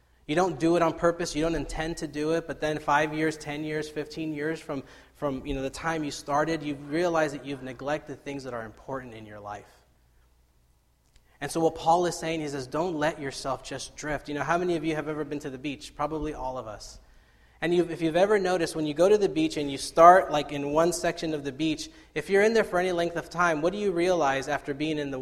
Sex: male